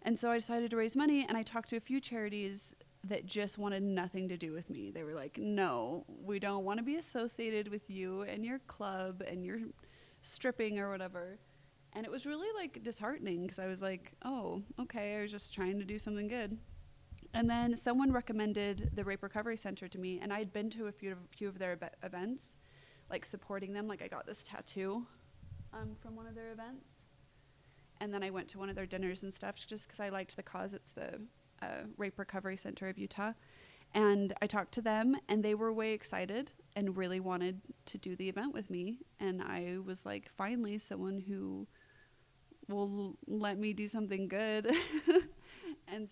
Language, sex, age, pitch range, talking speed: English, female, 20-39, 185-225 Hz, 200 wpm